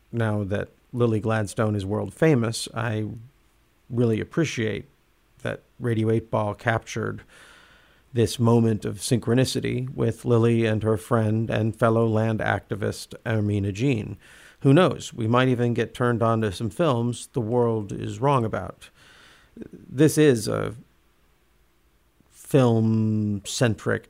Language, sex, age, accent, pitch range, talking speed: English, male, 50-69, American, 105-120 Hz, 125 wpm